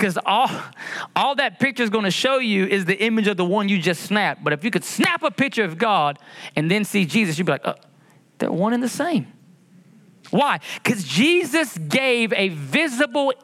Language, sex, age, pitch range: English, male, 30-49, 170-225 Hz